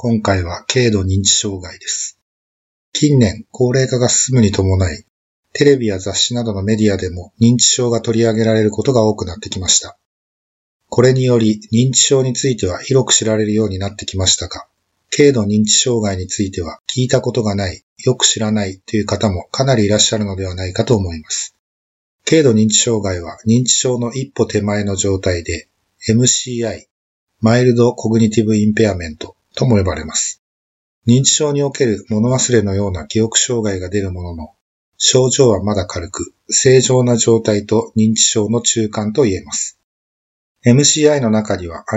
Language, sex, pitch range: Japanese, male, 100-120 Hz